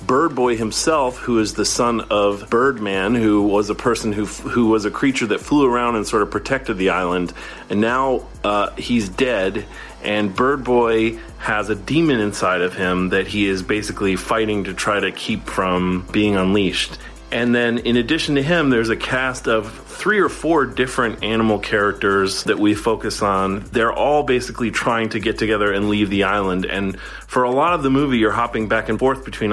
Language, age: English, 30-49